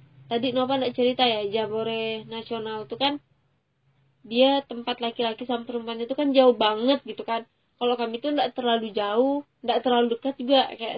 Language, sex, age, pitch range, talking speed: Indonesian, female, 20-39, 230-265 Hz, 170 wpm